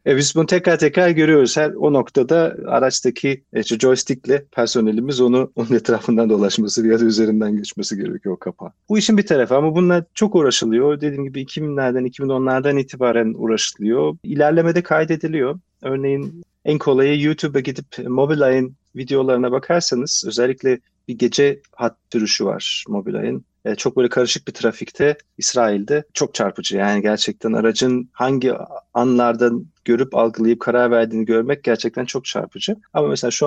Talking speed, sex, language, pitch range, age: 140 wpm, male, Turkish, 120-150 Hz, 40-59